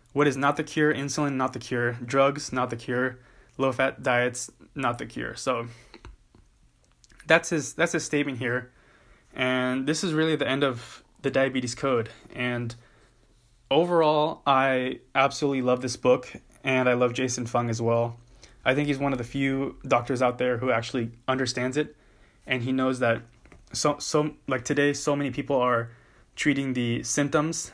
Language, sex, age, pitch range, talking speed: English, male, 20-39, 120-135 Hz, 170 wpm